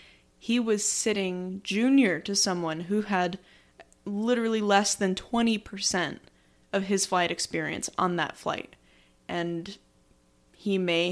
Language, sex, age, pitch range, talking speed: English, female, 20-39, 175-220 Hz, 120 wpm